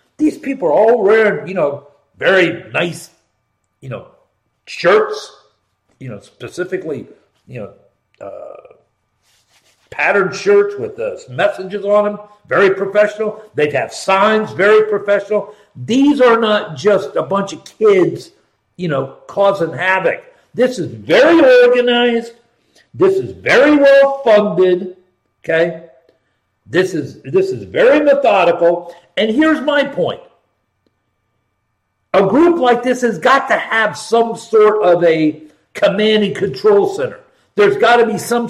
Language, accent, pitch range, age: English, American, 175-255 Hz, 60-79